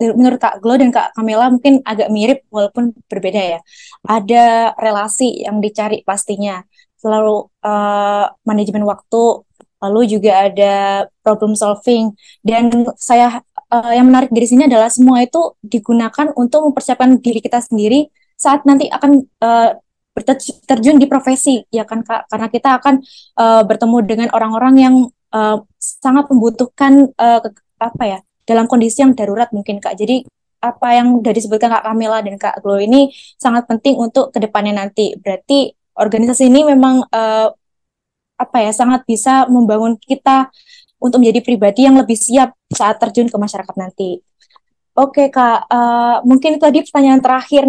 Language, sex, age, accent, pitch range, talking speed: Indonesian, female, 20-39, native, 215-260 Hz, 150 wpm